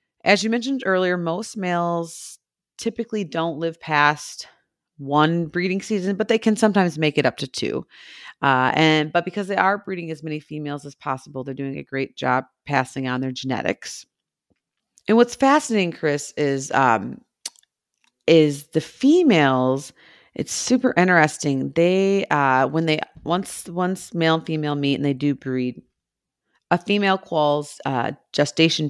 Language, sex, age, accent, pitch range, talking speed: English, female, 30-49, American, 145-190 Hz, 155 wpm